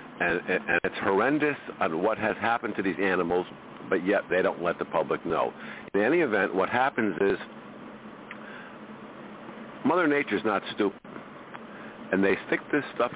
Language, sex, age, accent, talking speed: English, male, 50-69, American, 155 wpm